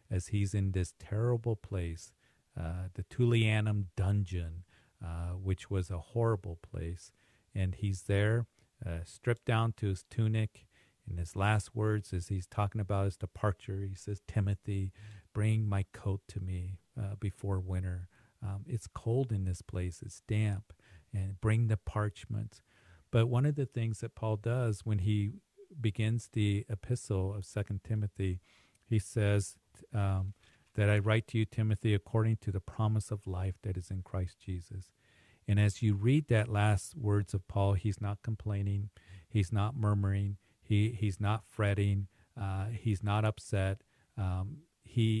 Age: 40-59